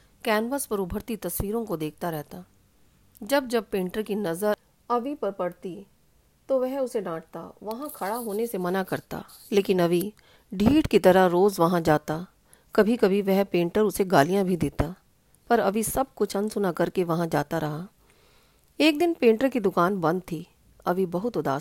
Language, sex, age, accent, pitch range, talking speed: English, female, 40-59, Indian, 175-230 Hz, 150 wpm